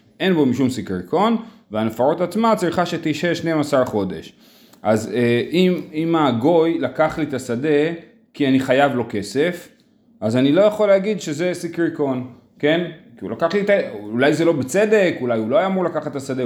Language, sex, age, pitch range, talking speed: Hebrew, male, 30-49, 130-190 Hz, 180 wpm